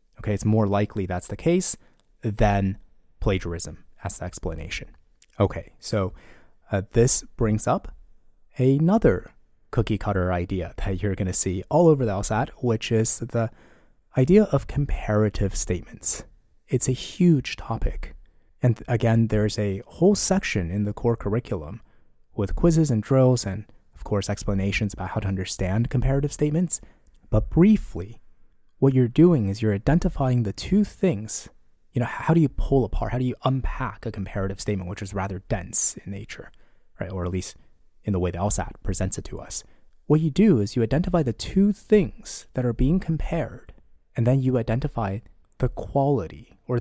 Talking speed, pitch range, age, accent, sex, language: 165 wpm, 100-130 Hz, 20-39, American, male, English